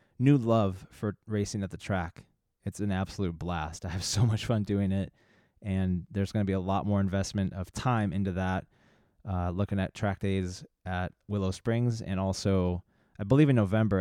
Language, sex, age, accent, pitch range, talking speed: English, male, 20-39, American, 95-110 Hz, 195 wpm